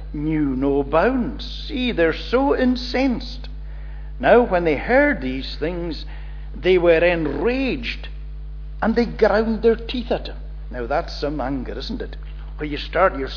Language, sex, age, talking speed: English, male, 60-79, 150 wpm